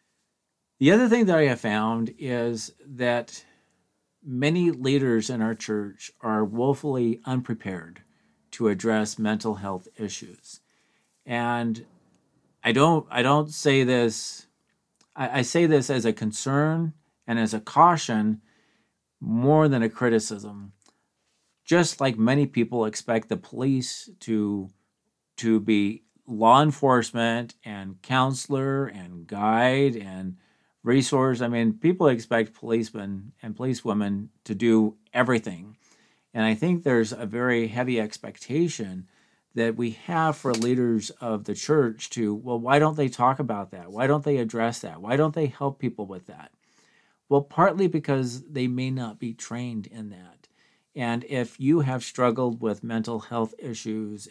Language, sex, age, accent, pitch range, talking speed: English, male, 50-69, American, 110-135 Hz, 140 wpm